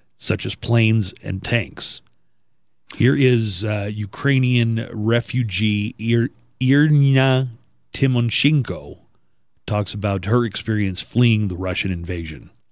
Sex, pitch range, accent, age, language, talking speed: male, 95-125 Hz, American, 40-59, English, 95 wpm